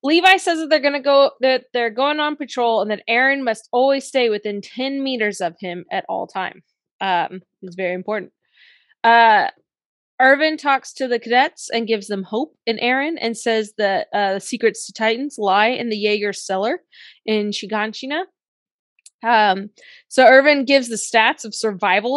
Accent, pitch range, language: American, 215-275 Hz, English